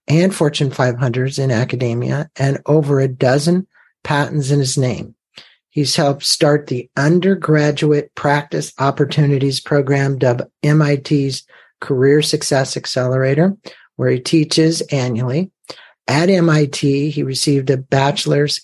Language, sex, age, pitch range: English, male, 50-69, 135-160 Hz